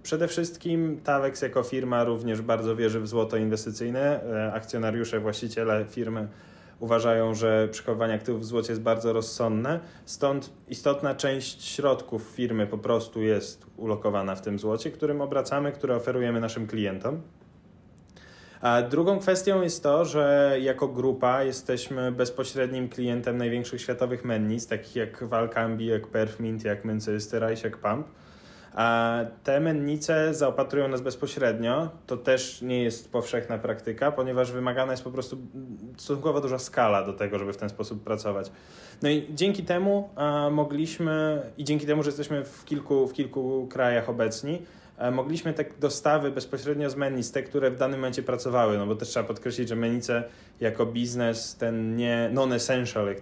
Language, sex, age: Polish, male, 20-39